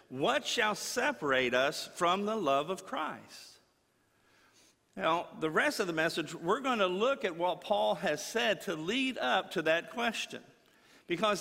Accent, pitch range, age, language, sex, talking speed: American, 145-200 Hz, 50-69, English, male, 165 wpm